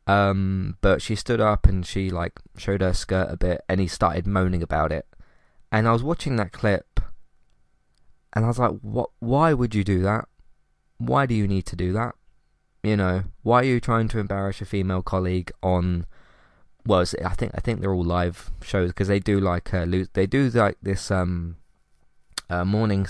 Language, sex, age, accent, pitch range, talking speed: English, male, 20-39, British, 85-100 Hz, 195 wpm